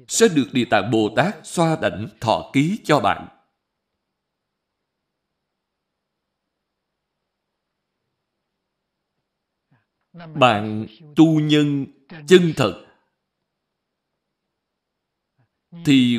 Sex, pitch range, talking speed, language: male, 115-160 Hz, 65 wpm, Vietnamese